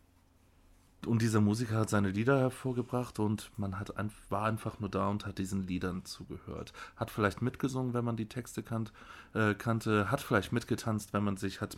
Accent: German